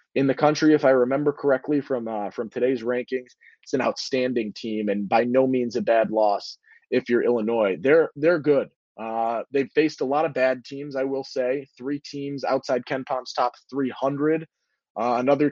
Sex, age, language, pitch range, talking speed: male, 20-39, English, 125-145 Hz, 190 wpm